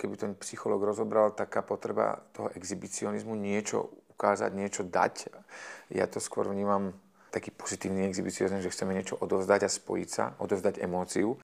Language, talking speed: Slovak, 145 wpm